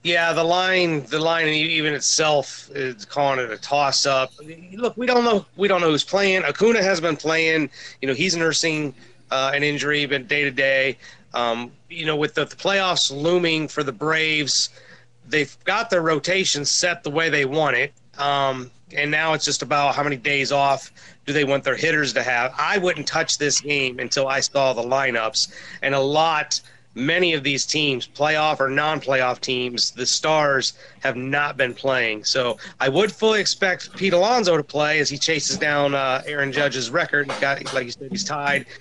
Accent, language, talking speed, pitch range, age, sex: American, English, 190 wpm, 135-160 Hz, 30-49, male